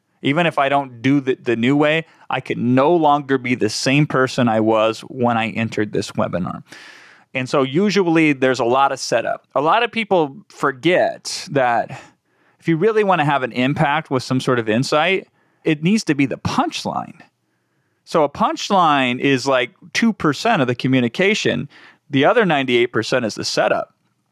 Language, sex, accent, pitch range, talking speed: English, male, American, 130-170 Hz, 180 wpm